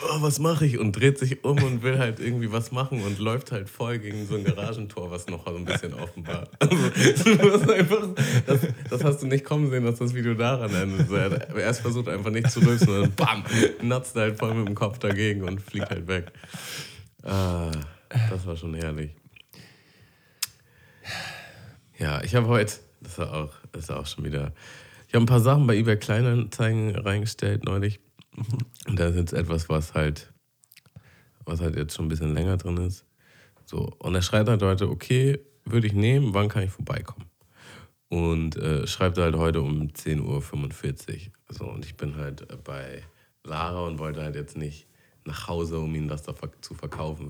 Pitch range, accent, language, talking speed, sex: 85-125 Hz, German, German, 185 wpm, male